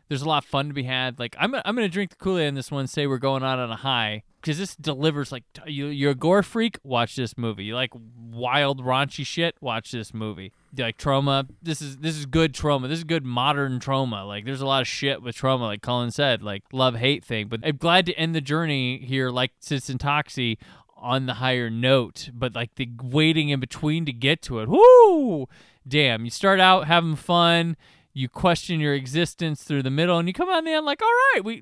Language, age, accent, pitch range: English, 20-39, American, 130-170 Hz